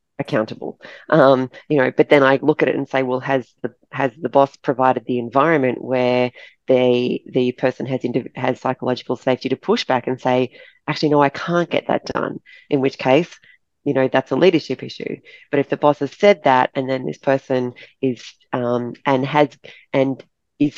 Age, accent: 30-49, Australian